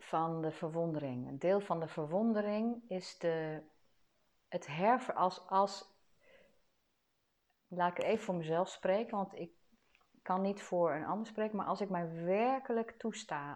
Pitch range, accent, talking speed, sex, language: 155-210 Hz, Dutch, 155 wpm, female, Dutch